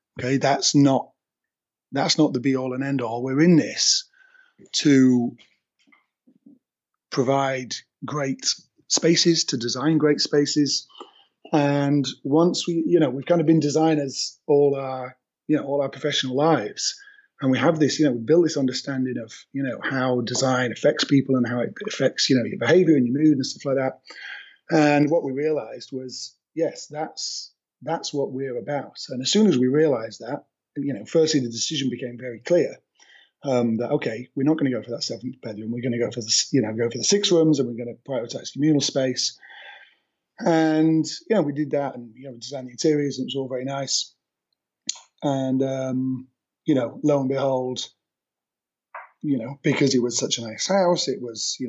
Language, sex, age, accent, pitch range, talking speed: English, male, 30-49, British, 125-155 Hz, 195 wpm